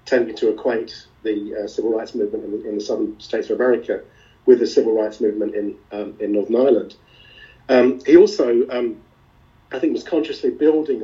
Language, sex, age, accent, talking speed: English, male, 40-59, British, 190 wpm